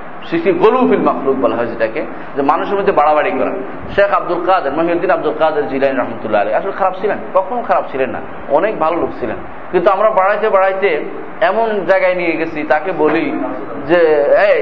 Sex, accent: male, native